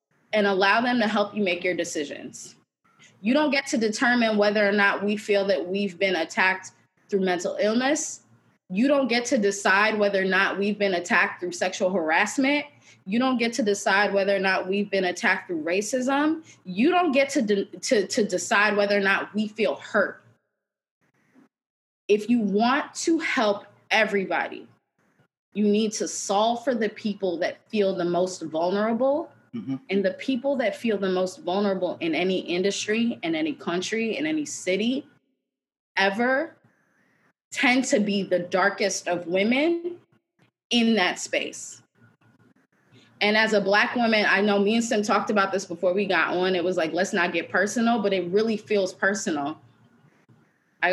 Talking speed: 165 wpm